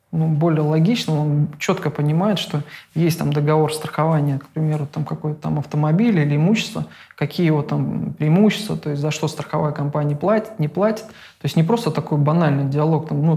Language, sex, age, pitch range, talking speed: English, male, 20-39, 150-170 Hz, 185 wpm